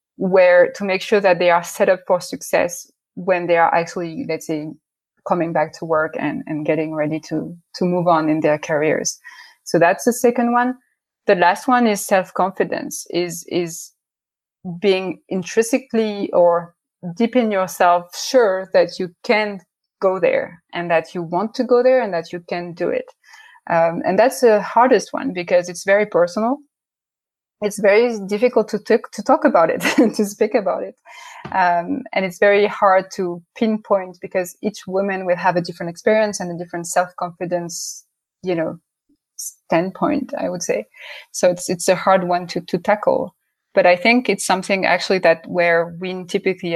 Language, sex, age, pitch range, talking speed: English, female, 20-39, 175-215 Hz, 175 wpm